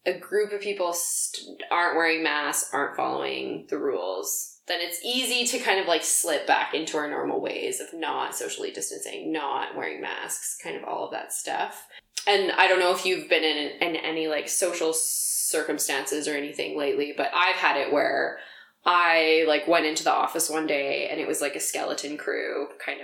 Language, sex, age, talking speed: English, female, 20-39, 195 wpm